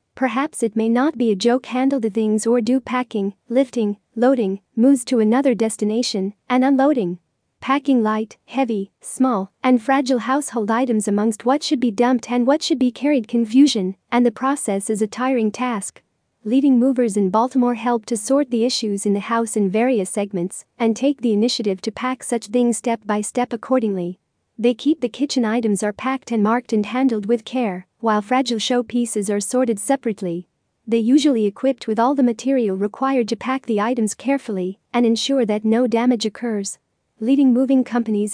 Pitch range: 215-255 Hz